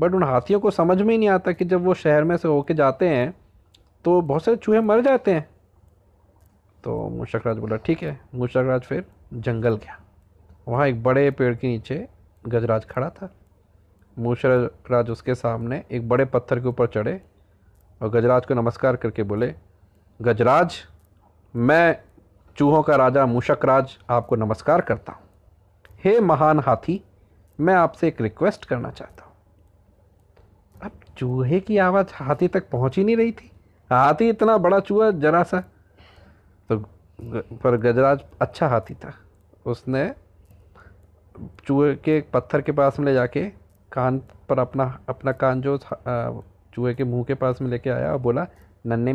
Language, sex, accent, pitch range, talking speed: Hindi, male, native, 95-145 Hz, 155 wpm